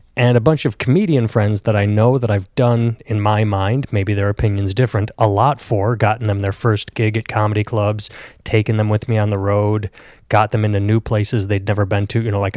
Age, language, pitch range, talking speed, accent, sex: 30-49, English, 105-130 Hz, 235 wpm, American, male